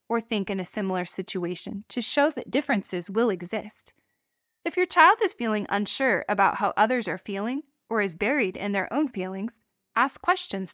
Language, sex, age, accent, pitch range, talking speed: English, female, 20-39, American, 200-285 Hz, 180 wpm